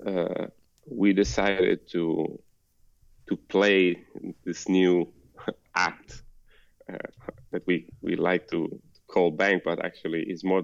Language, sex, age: English, male, 30-49